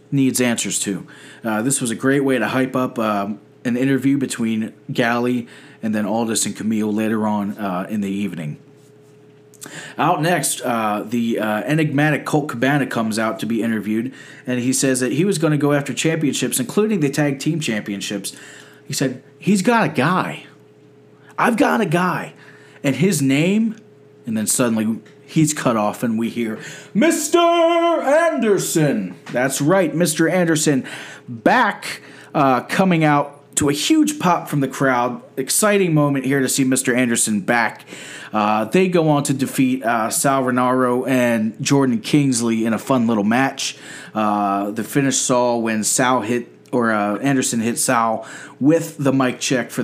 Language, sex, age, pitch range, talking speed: English, male, 30-49, 115-145 Hz, 165 wpm